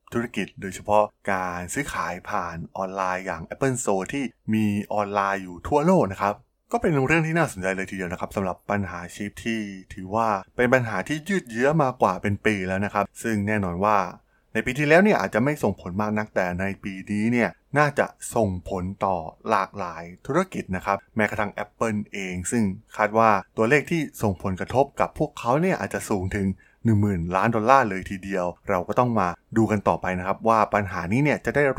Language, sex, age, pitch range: Thai, male, 20-39, 95-120 Hz